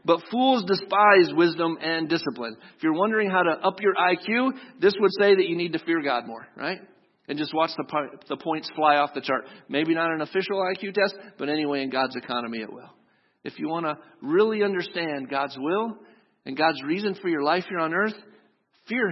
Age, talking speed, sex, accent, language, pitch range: 50-69, 205 wpm, male, American, English, 160-205 Hz